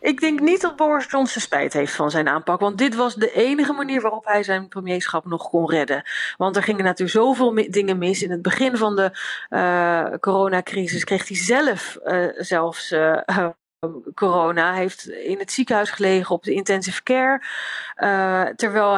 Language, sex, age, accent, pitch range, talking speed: Dutch, female, 40-59, Dutch, 175-215 Hz, 180 wpm